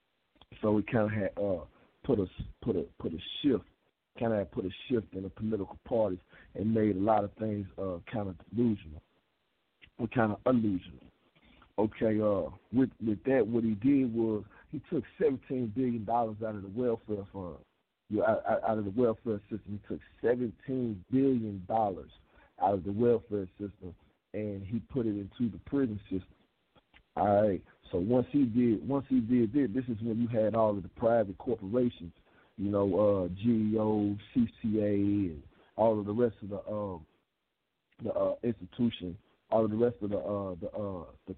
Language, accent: English, American